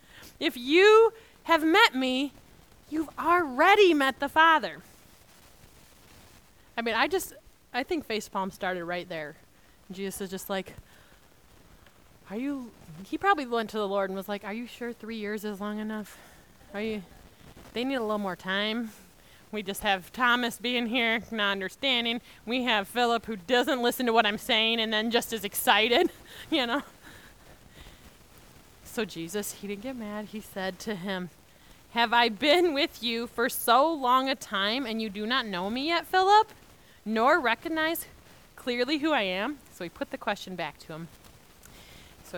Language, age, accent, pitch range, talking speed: English, 20-39, American, 205-280 Hz, 170 wpm